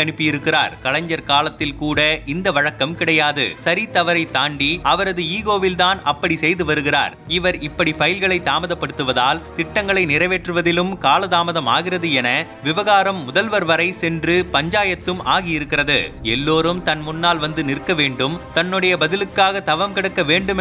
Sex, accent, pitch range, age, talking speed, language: male, native, 150-175 Hz, 30-49, 115 wpm, Tamil